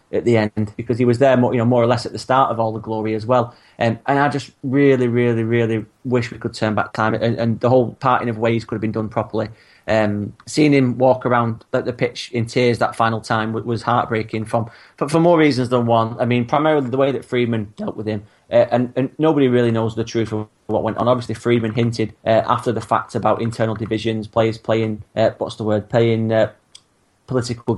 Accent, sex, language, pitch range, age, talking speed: British, male, English, 110-125 Hz, 30-49, 235 wpm